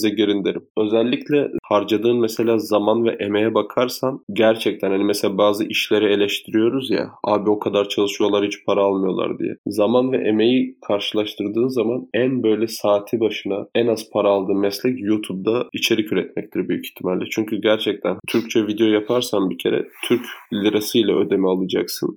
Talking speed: 150 wpm